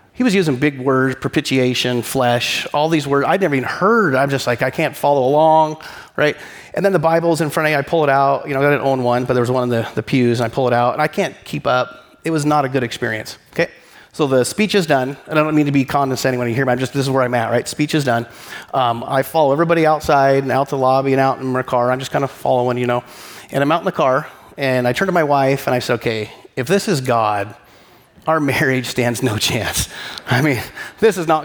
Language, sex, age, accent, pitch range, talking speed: English, male, 30-49, American, 125-160 Hz, 275 wpm